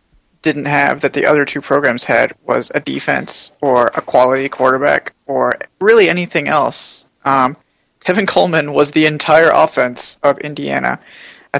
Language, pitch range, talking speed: English, 135-165 Hz, 150 wpm